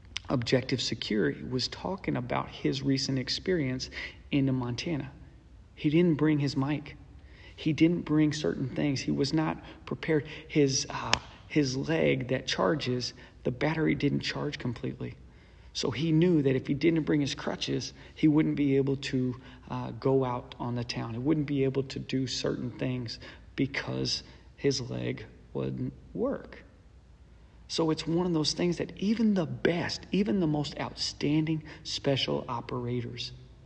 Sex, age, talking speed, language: male, 40-59, 150 wpm, English